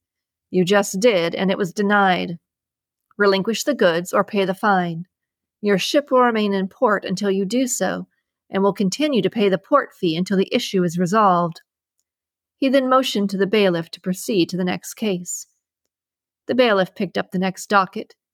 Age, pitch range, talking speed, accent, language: 40-59, 180-225 Hz, 185 wpm, American, English